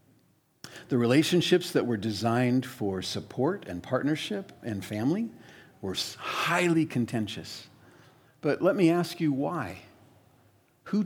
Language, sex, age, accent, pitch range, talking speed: English, male, 50-69, American, 110-140 Hz, 115 wpm